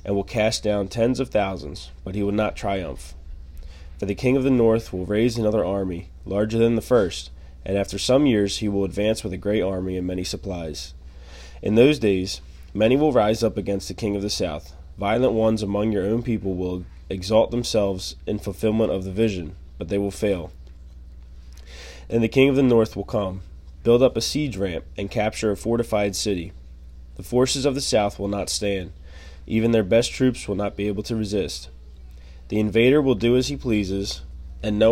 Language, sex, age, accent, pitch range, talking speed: English, male, 20-39, American, 75-115 Hz, 200 wpm